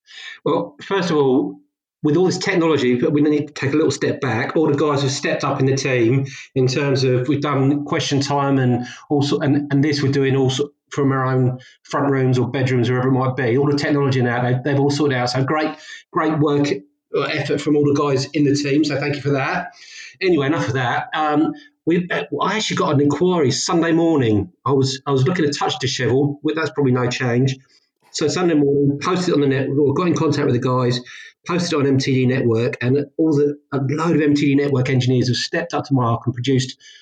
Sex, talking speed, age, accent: male, 225 wpm, 40-59, British